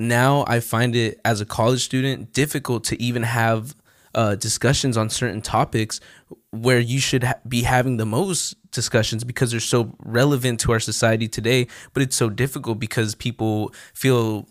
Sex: male